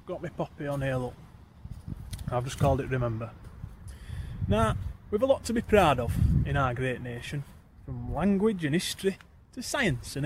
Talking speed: 175 wpm